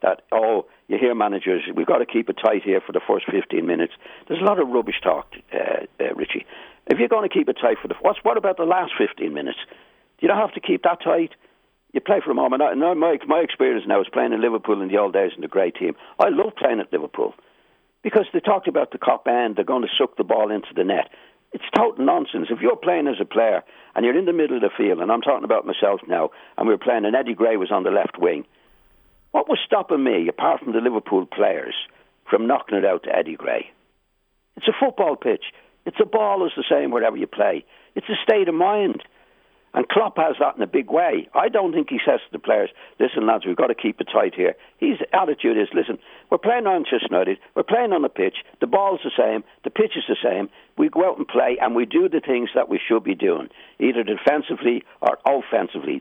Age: 60-79